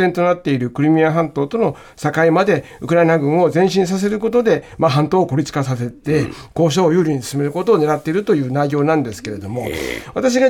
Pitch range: 150-235 Hz